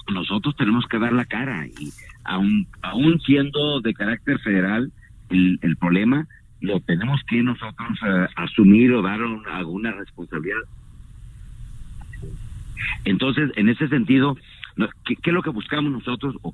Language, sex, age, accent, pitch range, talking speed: Spanish, male, 50-69, Mexican, 100-130 Hz, 130 wpm